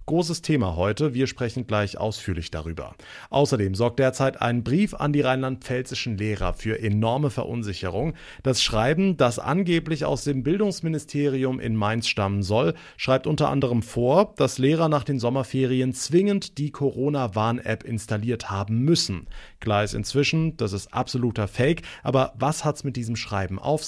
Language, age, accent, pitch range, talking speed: German, 30-49, German, 110-145 Hz, 155 wpm